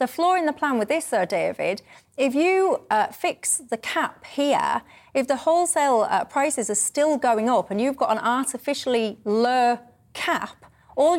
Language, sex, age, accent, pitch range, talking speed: English, female, 30-49, British, 220-290 Hz, 175 wpm